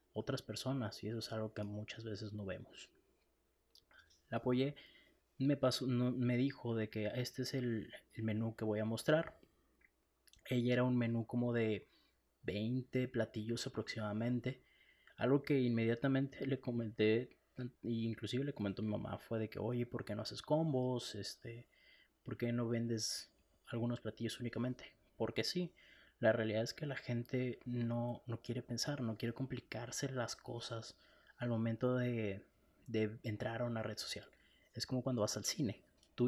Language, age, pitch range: Spanish, 30-49, 110-125 Hz